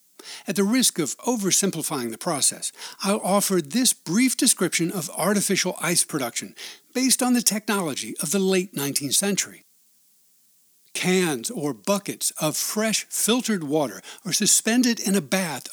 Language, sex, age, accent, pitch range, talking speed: English, male, 60-79, American, 165-220 Hz, 140 wpm